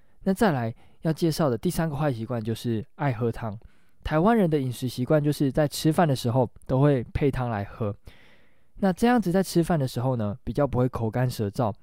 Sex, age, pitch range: male, 20-39, 115-160 Hz